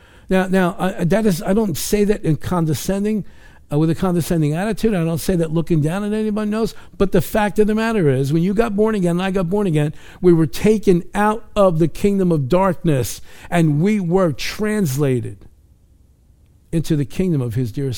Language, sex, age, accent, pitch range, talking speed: English, male, 50-69, American, 135-190 Hz, 205 wpm